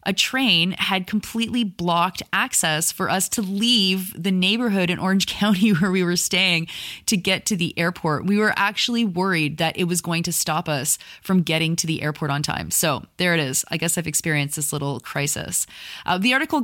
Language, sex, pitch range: English, female, 155-195 Hz